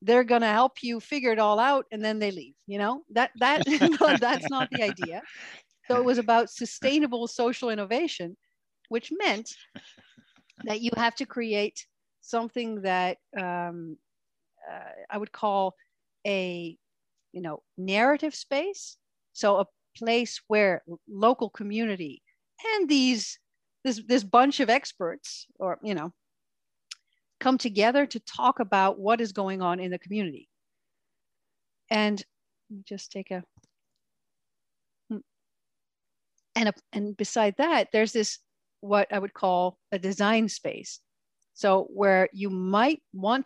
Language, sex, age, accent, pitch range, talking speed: English, female, 50-69, American, 195-250 Hz, 135 wpm